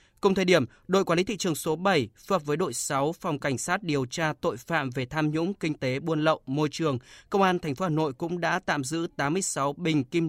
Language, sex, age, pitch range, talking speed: Vietnamese, male, 20-39, 140-170 Hz, 250 wpm